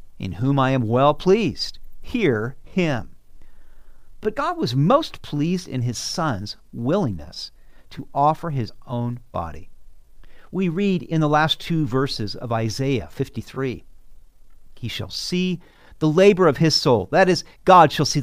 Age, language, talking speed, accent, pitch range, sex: 50-69, English, 150 wpm, American, 110-160 Hz, male